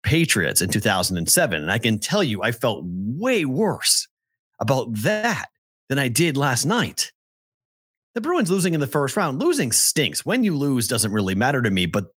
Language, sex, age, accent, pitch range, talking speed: English, male, 30-49, American, 110-170 Hz, 180 wpm